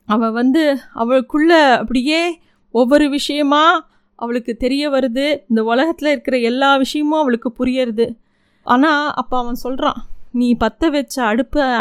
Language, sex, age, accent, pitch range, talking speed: Tamil, female, 20-39, native, 225-270 Hz, 120 wpm